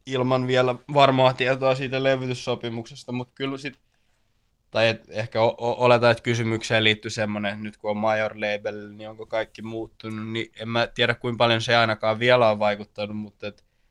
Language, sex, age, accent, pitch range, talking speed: Finnish, male, 20-39, native, 105-120 Hz, 175 wpm